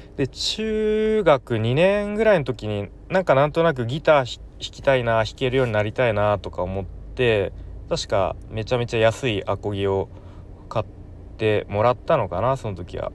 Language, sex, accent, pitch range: Japanese, male, native, 95-120 Hz